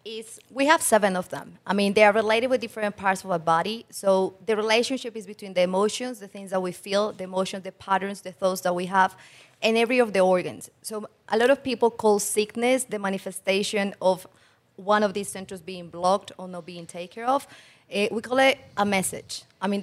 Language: English